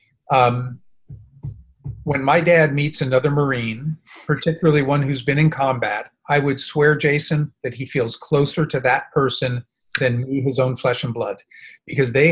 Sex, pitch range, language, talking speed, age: male, 130-160 Hz, English, 160 wpm, 40-59